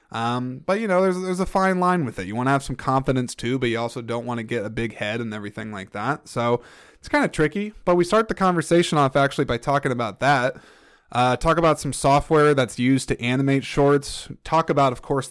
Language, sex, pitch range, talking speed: English, male, 120-155 Hz, 245 wpm